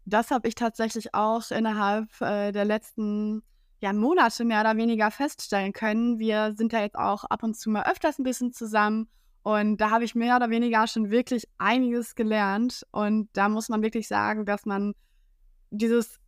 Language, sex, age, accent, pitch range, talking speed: German, female, 20-39, German, 210-240 Hz, 175 wpm